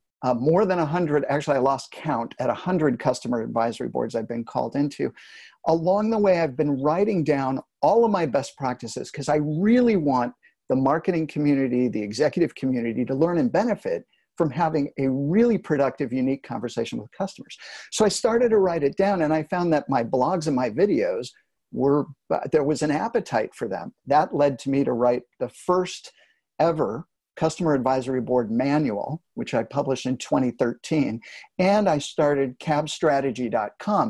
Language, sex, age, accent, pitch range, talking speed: English, male, 50-69, American, 130-170 Hz, 170 wpm